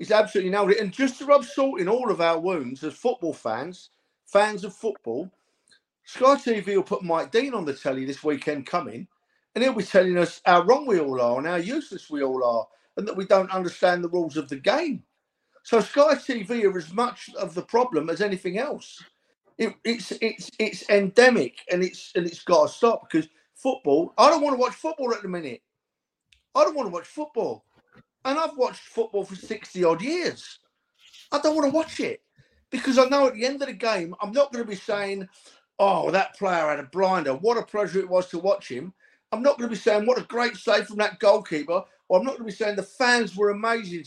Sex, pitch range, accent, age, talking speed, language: male, 170-240 Hz, British, 50-69, 225 wpm, English